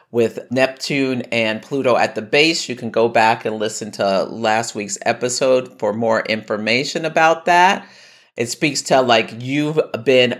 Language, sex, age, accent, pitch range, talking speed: English, male, 50-69, American, 115-155 Hz, 160 wpm